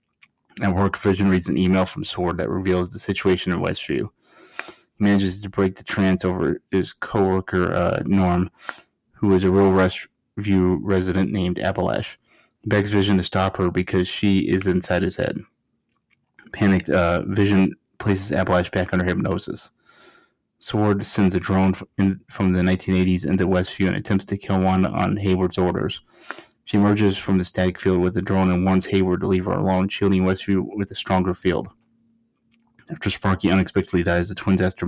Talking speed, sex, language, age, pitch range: 170 wpm, male, English, 20-39, 90-100 Hz